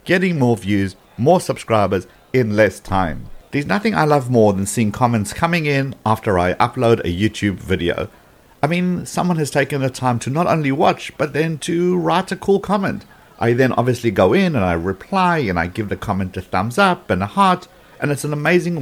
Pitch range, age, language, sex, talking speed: 105-150 Hz, 50-69, English, male, 205 wpm